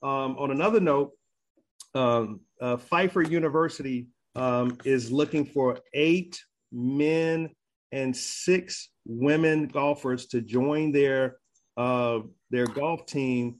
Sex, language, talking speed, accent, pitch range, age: male, English, 110 wpm, American, 120-140 Hz, 40-59